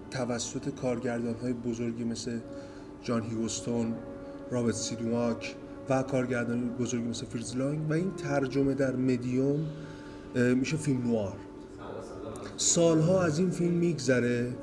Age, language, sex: 30-49, Persian, male